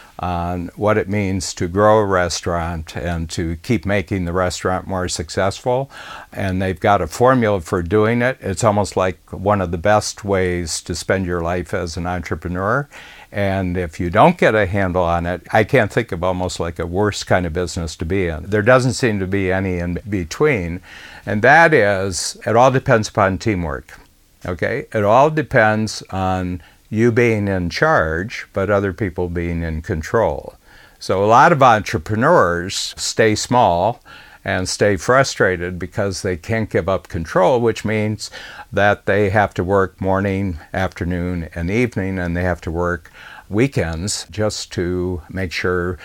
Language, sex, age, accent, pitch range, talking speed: English, male, 60-79, American, 90-105 Hz, 170 wpm